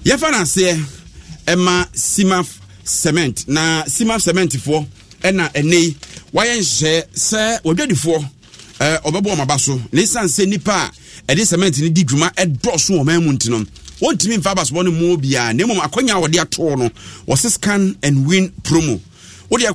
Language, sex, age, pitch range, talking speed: English, male, 50-69, 130-185 Hz, 175 wpm